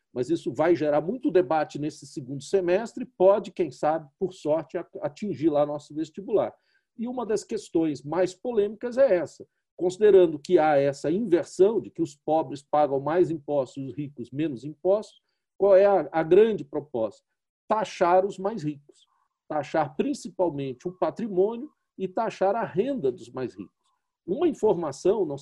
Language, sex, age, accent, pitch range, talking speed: Portuguese, male, 50-69, Brazilian, 155-245 Hz, 155 wpm